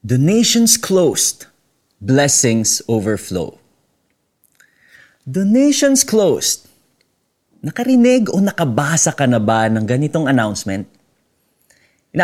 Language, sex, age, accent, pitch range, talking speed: Filipino, male, 30-49, native, 125-190 Hz, 90 wpm